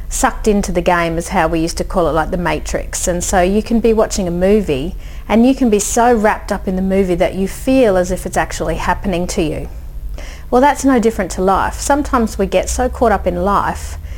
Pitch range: 170-215 Hz